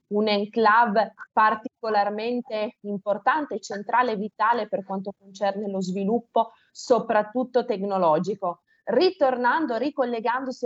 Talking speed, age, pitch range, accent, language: 90 wpm, 20-39, 195-230 Hz, native, Italian